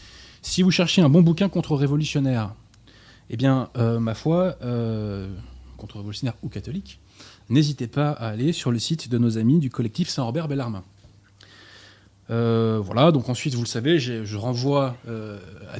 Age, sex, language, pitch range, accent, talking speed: 20-39, male, French, 110-145 Hz, French, 150 wpm